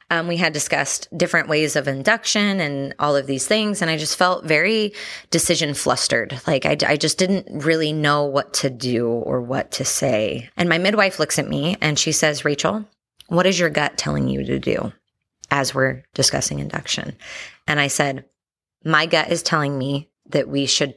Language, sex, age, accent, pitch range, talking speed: English, female, 20-39, American, 135-170 Hz, 190 wpm